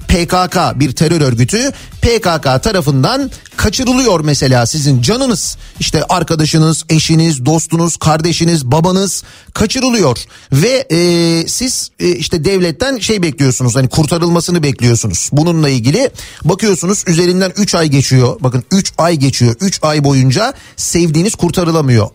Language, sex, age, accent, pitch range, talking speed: Turkish, male, 40-59, native, 140-180 Hz, 120 wpm